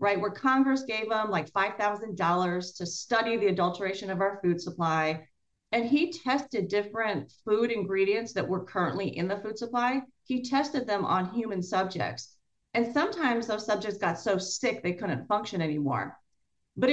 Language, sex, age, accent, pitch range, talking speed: English, female, 40-59, American, 185-250 Hz, 165 wpm